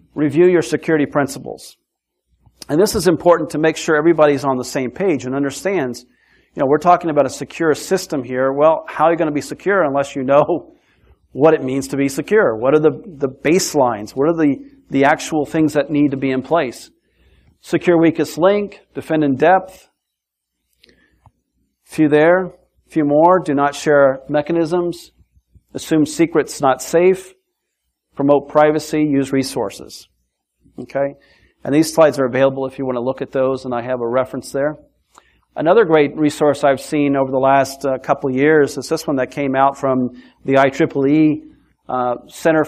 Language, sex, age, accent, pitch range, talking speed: English, male, 50-69, American, 135-160 Hz, 175 wpm